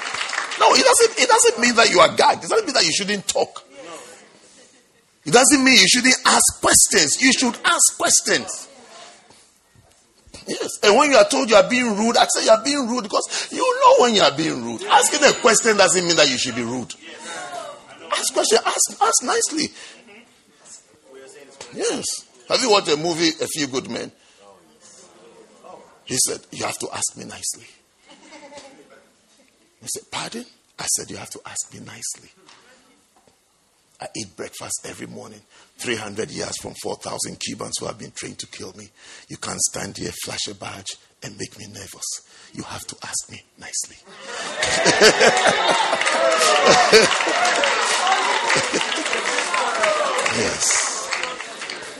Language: English